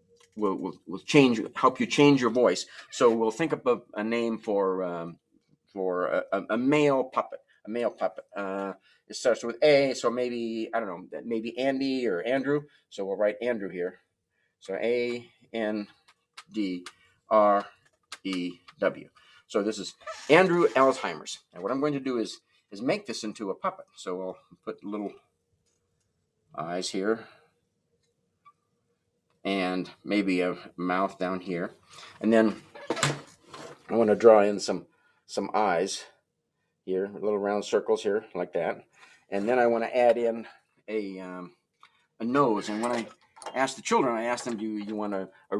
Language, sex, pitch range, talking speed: English, male, 95-120 Hz, 160 wpm